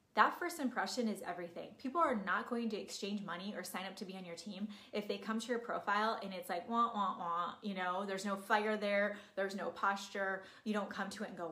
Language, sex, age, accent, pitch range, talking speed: English, female, 20-39, American, 195-245 Hz, 250 wpm